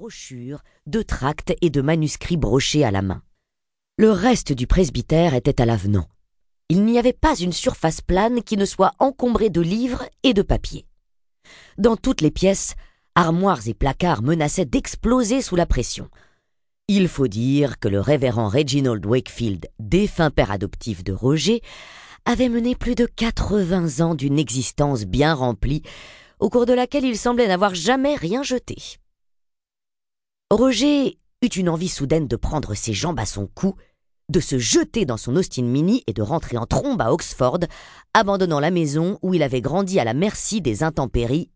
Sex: female